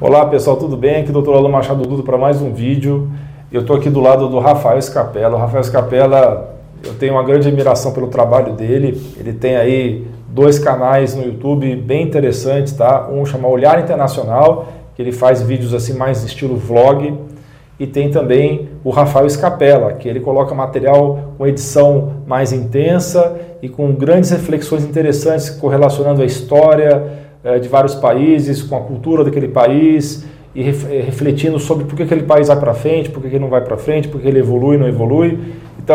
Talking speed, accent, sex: 185 wpm, Brazilian, male